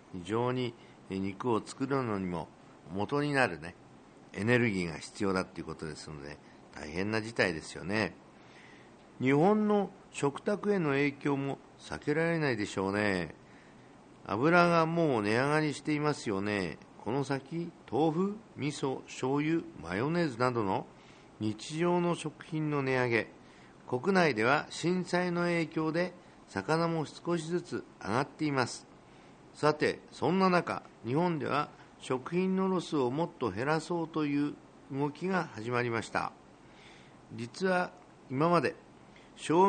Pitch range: 115-165 Hz